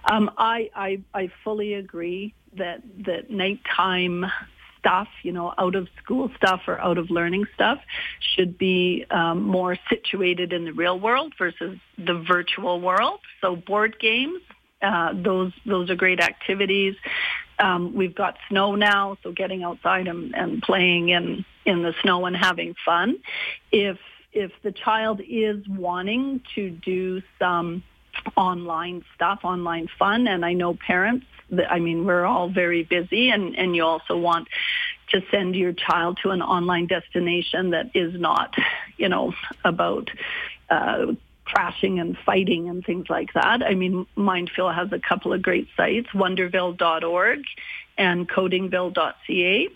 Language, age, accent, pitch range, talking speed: English, 50-69, American, 175-205 Hz, 150 wpm